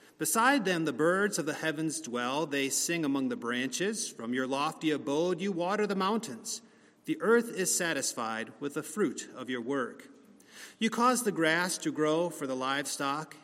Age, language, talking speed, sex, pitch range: 40-59, English, 180 wpm, male, 145-185 Hz